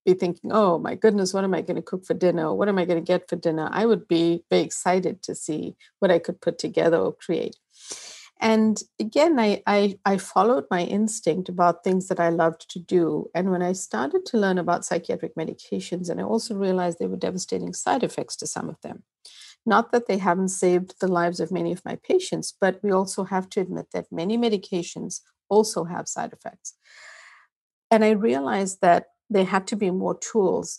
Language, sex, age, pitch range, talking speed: English, female, 50-69, 175-215 Hz, 205 wpm